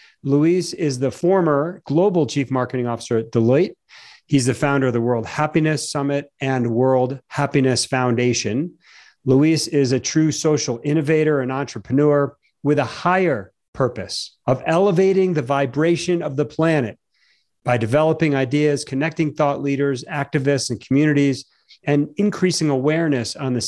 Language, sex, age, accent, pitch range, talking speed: English, male, 40-59, American, 125-150 Hz, 140 wpm